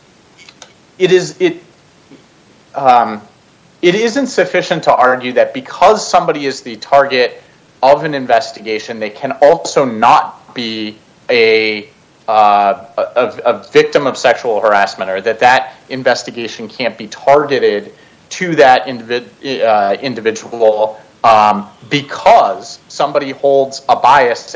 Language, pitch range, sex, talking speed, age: English, 110-170 Hz, male, 120 wpm, 30-49